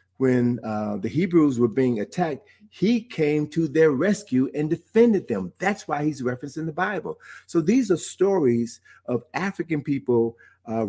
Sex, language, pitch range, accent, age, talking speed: male, English, 105-150 Hz, American, 50-69, 165 wpm